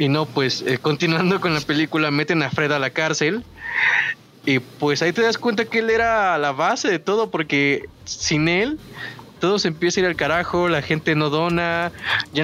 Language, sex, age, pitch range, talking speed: Spanish, male, 20-39, 140-175 Hz, 205 wpm